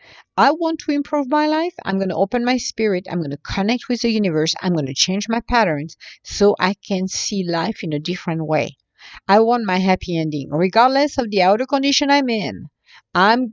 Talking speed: 210 wpm